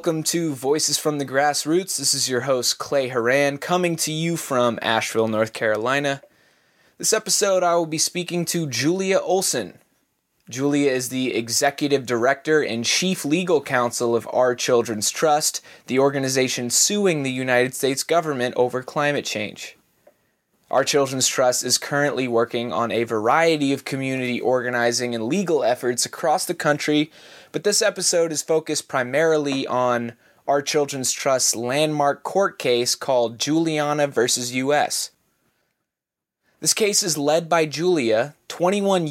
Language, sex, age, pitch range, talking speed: English, male, 20-39, 125-165 Hz, 145 wpm